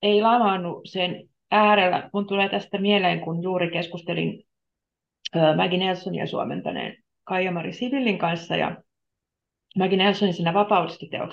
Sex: female